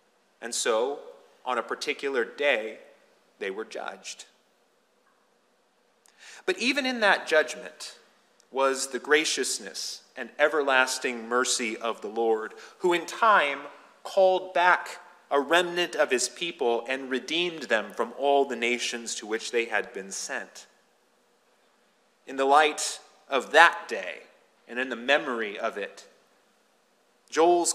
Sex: male